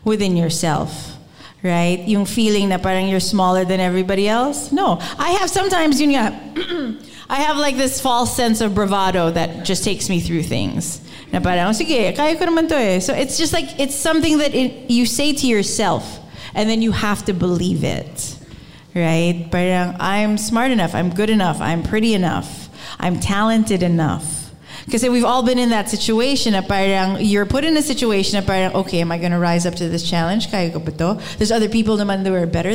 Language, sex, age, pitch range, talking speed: English, female, 30-49, 180-245 Hz, 185 wpm